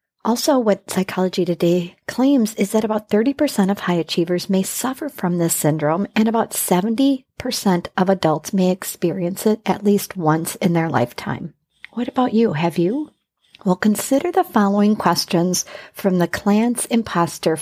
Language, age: English, 50-69